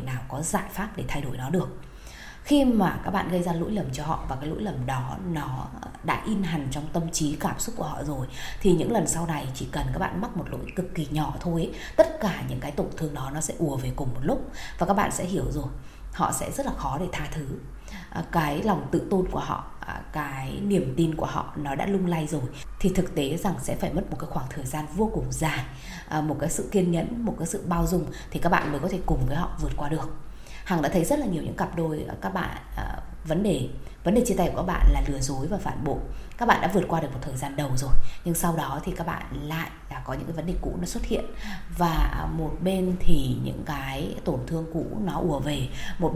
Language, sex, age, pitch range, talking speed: Vietnamese, female, 20-39, 140-180 Hz, 260 wpm